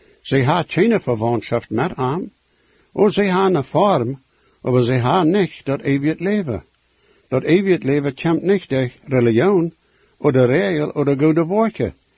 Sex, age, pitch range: male, 60-79, 130-170 Hz